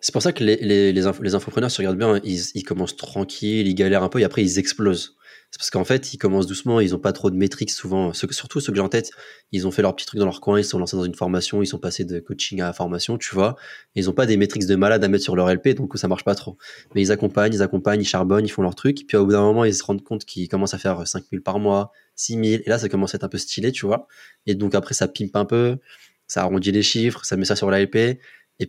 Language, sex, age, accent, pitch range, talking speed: French, male, 20-39, French, 95-115 Hz, 295 wpm